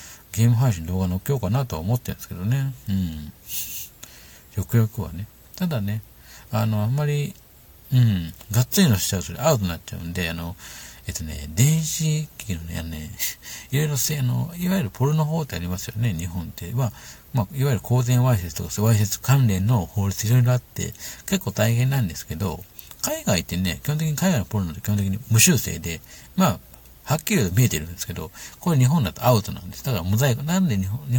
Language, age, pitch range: Japanese, 60-79, 90-125 Hz